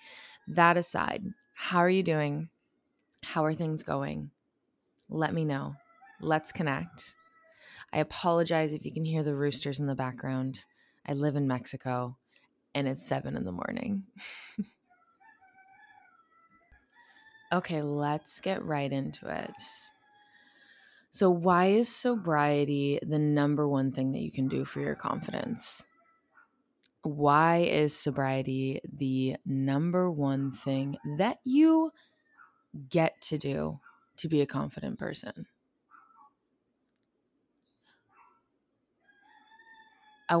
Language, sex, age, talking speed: English, female, 20-39, 110 wpm